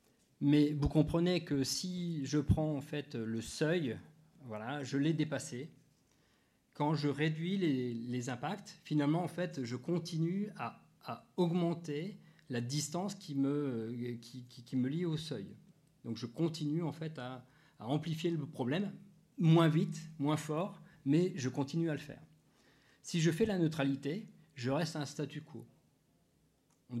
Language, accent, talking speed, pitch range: French, French, 160 wpm, 125-160 Hz